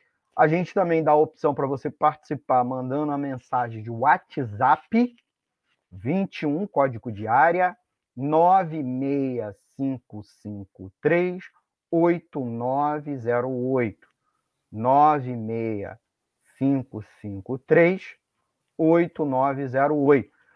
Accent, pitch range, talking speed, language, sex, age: Brazilian, 130-170 Hz, 60 wpm, Portuguese, male, 40-59